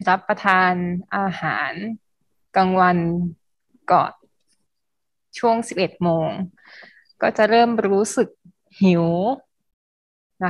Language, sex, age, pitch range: Thai, female, 20-39, 180-215 Hz